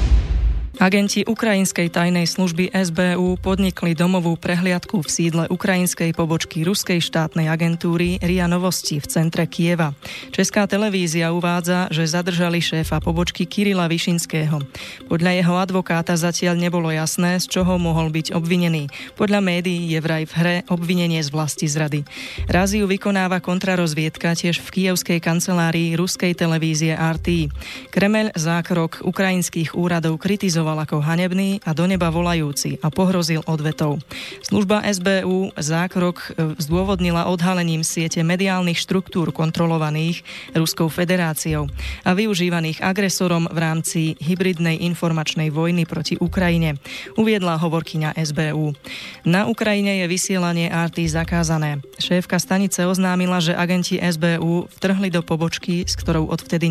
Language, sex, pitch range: Slovak, female, 160-185 Hz